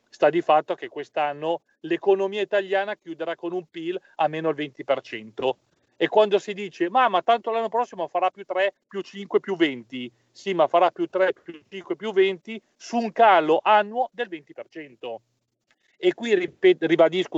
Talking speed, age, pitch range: 175 wpm, 40-59, 155-210 Hz